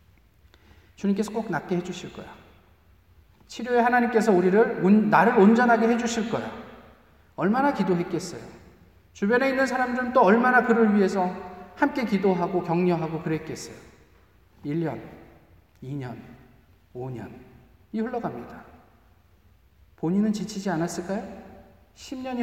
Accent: native